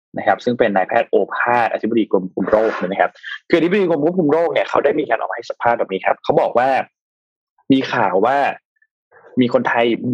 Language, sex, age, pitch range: Thai, male, 20-39, 115-170 Hz